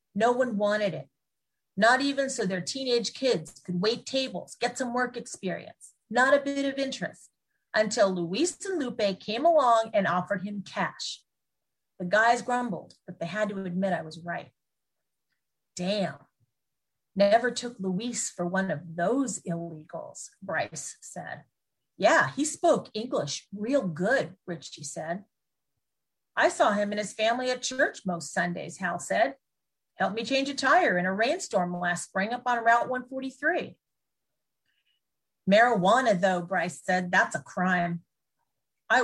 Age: 40-59